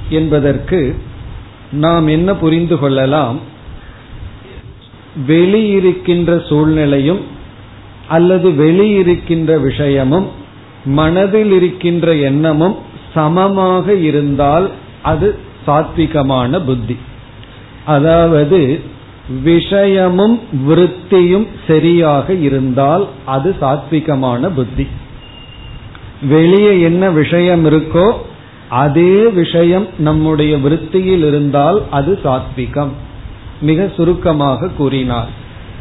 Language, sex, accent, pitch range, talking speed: Tamil, male, native, 130-175 Hz, 50 wpm